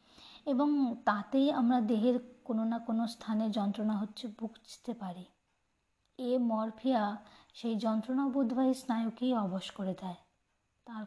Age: 20-39